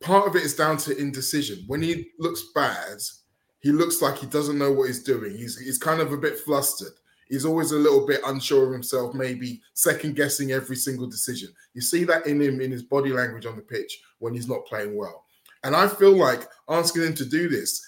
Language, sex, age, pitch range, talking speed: English, male, 20-39, 125-160 Hz, 220 wpm